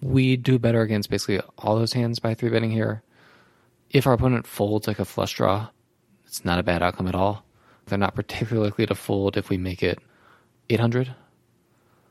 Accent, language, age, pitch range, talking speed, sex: American, English, 20-39, 95-120 Hz, 185 wpm, male